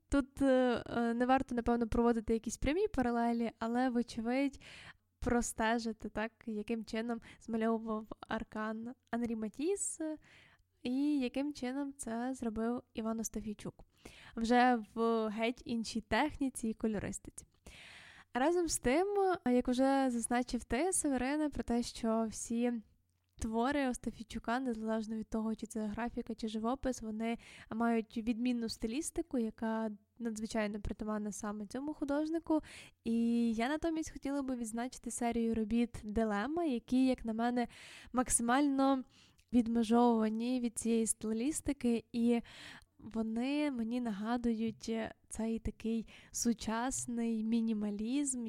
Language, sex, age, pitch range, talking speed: Ukrainian, female, 10-29, 225-255 Hz, 110 wpm